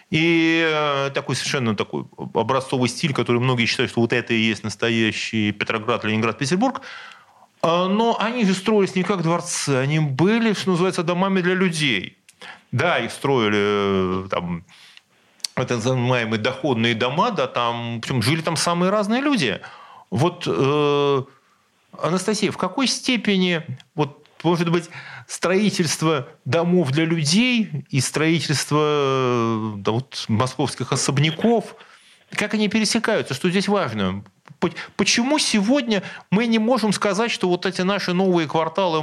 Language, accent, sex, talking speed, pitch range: Russian, native, male, 130 wpm, 140-190 Hz